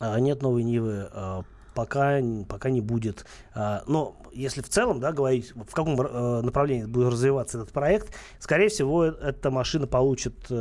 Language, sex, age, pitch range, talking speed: Russian, male, 30-49, 110-135 Hz, 135 wpm